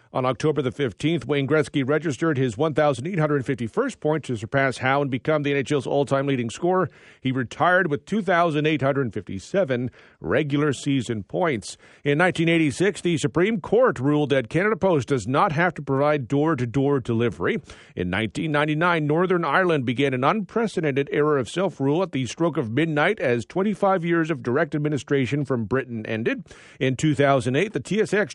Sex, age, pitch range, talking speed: male, 40-59, 130-165 Hz, 160 wpm